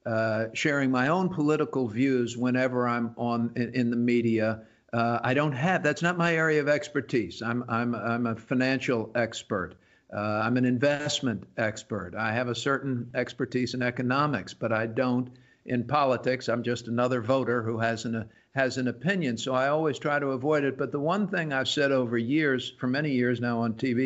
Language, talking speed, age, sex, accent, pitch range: English, 195 wpm, 50-69, male, American, 120-145 Hz